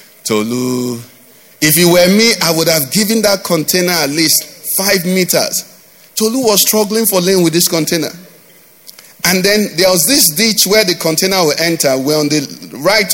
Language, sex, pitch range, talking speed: English, male, 150-205 Hz, 175 wpm